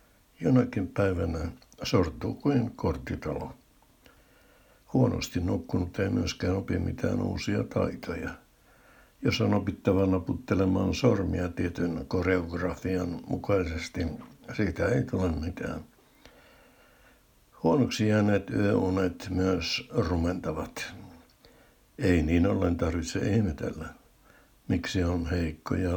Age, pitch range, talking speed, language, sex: 60-79, 85-100 Hz, 90 wpm, Finnish, male